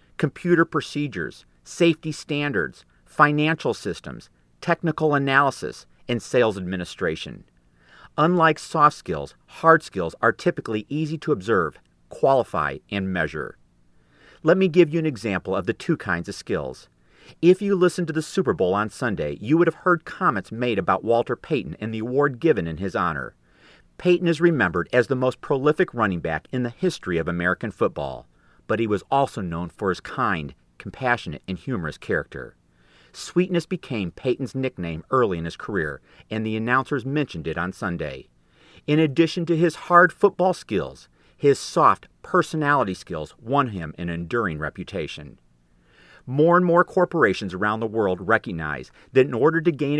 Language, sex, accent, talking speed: English, male, American, 160 wpm